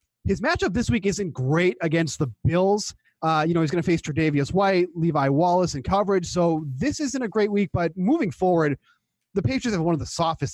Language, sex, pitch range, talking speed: English, male, 140-185 Hz, 215 wpm